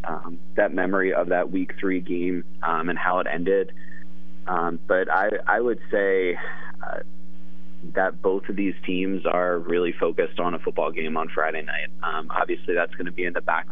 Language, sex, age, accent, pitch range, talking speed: English, male, 30-49, American, 75-95 Hz, 190 wpm